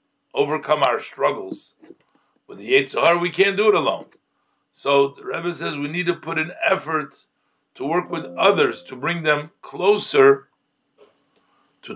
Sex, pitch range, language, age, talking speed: male, 140-205 Hz, English, 60-79, 150 wpm